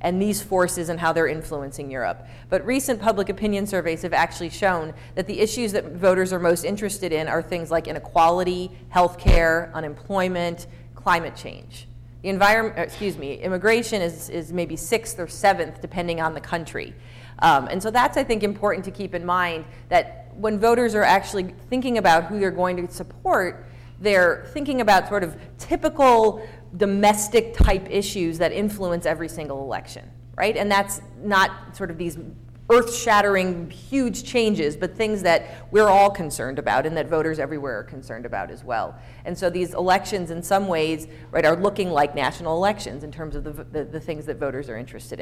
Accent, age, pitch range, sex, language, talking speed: American, 30-49, 155-200 Hz, female, English, 180 wpm